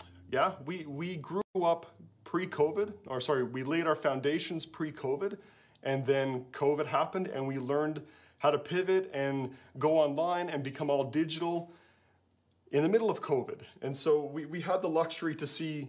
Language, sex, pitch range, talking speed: English, male, 145-180 Hz, 165 wpm